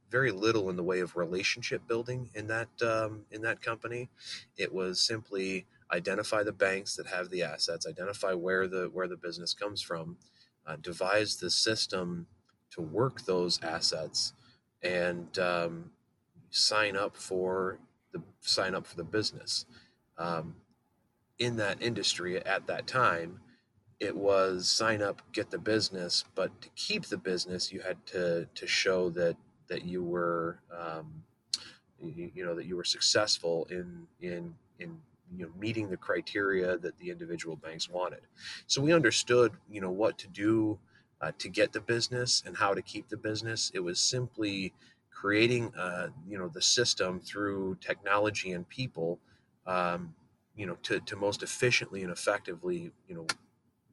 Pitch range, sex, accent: 90-115 Hz, male, American